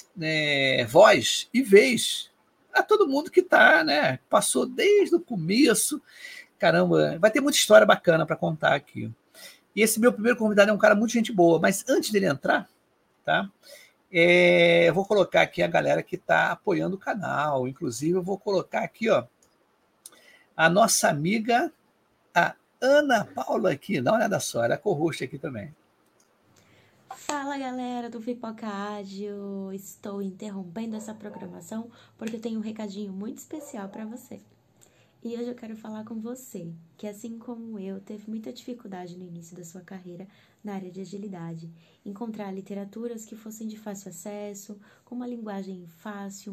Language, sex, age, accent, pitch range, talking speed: Portuguese, male, 50-69, Brazilian, 185-235 Hz, 160 wpm